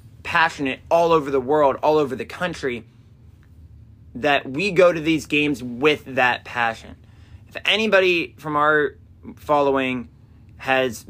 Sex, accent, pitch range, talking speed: male, American, 110-140 Hz, 130 wpm